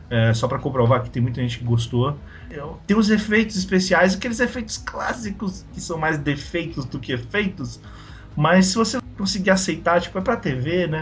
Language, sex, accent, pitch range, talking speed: Portuguese, male, Brazilian, 125-175 Hz, 185 wpm